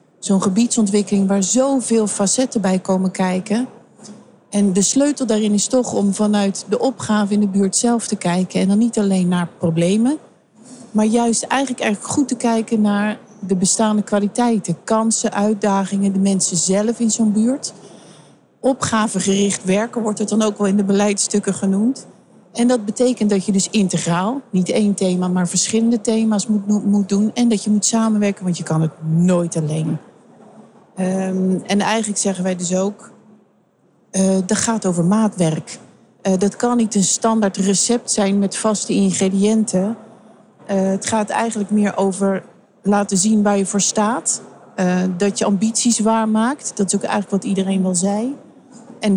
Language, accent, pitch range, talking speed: Dutch, Dutch, 195-225 Hz, 165 wpm